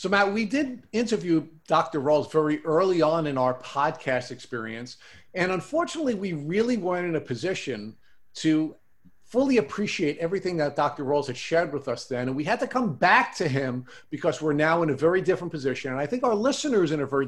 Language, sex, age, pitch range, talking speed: English, male, 50-69, 130-175 Hz, 200 wpm